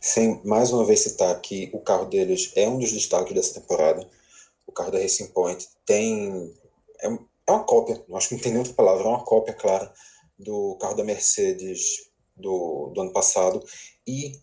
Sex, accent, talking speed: male, Brazilian, 185 wpm